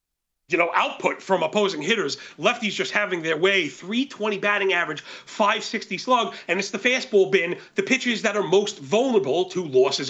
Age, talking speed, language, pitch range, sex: 30-49, 170 wpm, English, 200-235 Hz, male